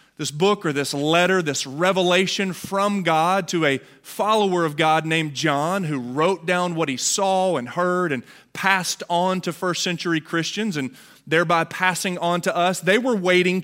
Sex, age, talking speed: male, 30-49, 175 wpm